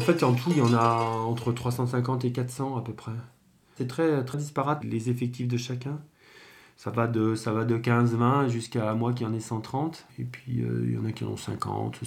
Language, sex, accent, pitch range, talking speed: French, male, French, 115-135 Hz, 240 wpm